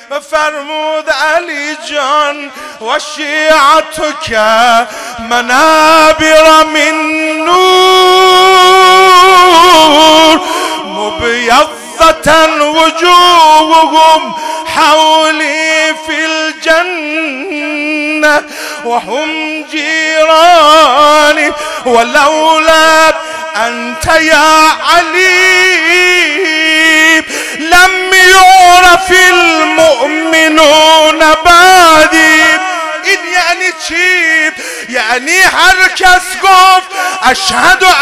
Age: 30-49